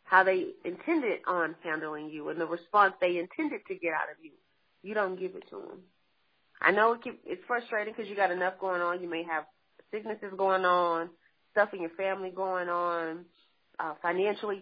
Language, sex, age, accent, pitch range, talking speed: English, female, 30-49, American, 175-220 Hz, 190 wpm